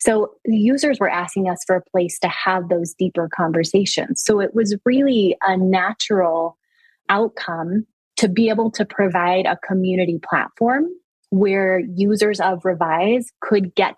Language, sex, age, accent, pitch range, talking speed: English, female, 20-39, American, 180-220 Hz, 145 wpm